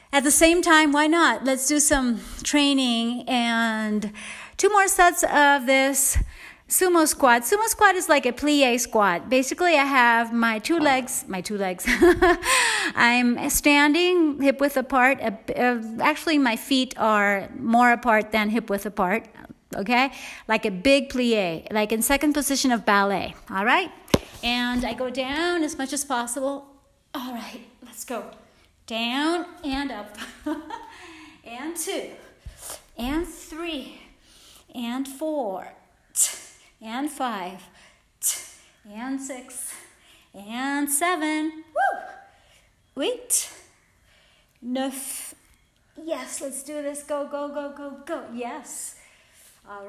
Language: English